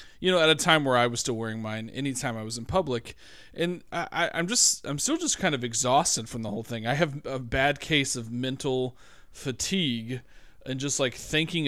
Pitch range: 120-155 Hz